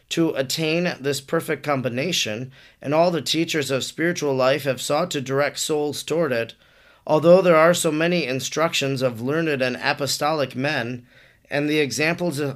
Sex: male